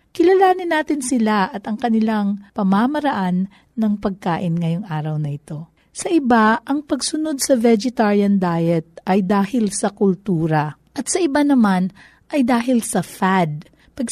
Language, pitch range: Filipino, 190-255 Hz